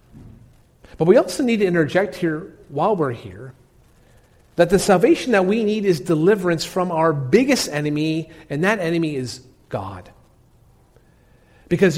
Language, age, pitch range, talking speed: English, 40-59, 140-200 Hz, 140 wpm